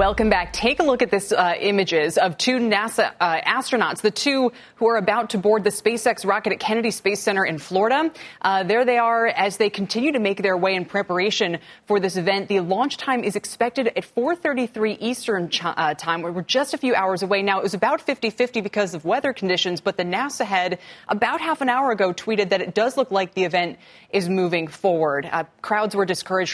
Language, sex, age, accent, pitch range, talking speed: English, female, 20-39, American, 175-220 Hz, 220 wpm